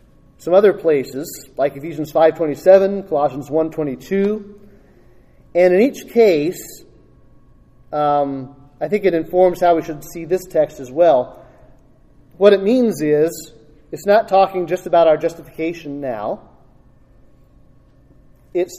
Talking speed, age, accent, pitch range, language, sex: 135 wpm, 30-49, American, 160-195 Hz, English, male